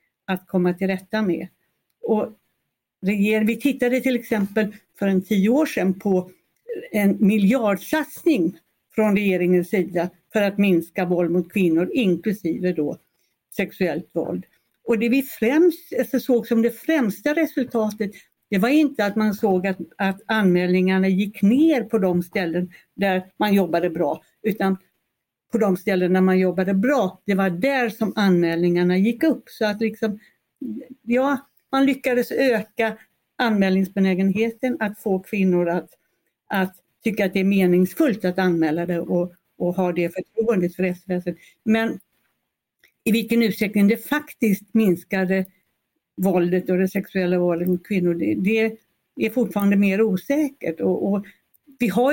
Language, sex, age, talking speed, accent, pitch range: Swedish, female, 60-79, 145 wpm, native, 185-225 Hz